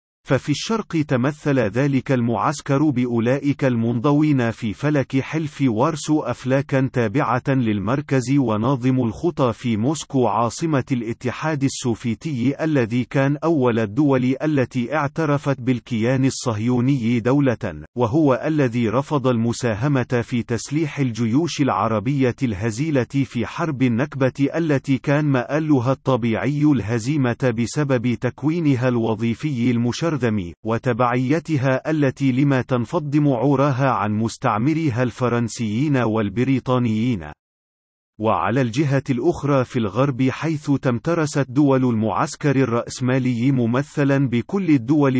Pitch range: 120-145 Hz